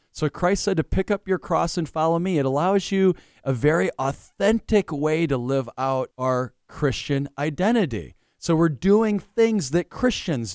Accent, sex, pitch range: American, male, 130-180 Hz